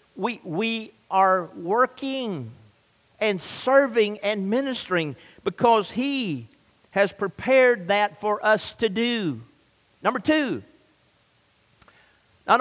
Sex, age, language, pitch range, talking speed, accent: male, 50-69, English, 205-265 Hz, 95 wpm, American